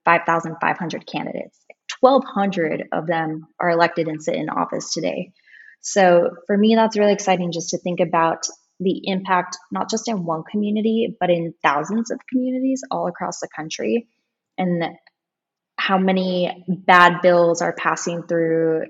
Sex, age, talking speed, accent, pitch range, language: female, 10-29, 145 wpm, American, 165-190 Hz, English